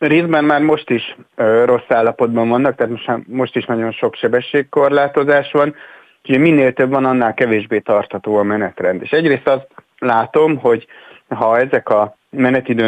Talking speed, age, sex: 160 wpm, 30-49, male